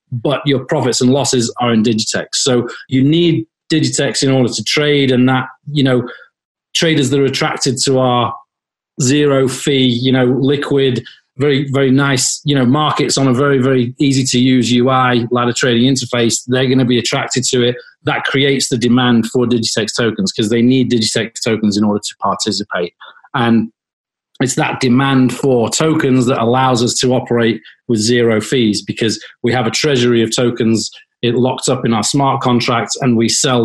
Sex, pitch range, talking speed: male, 115-135 Hz, 180 wpm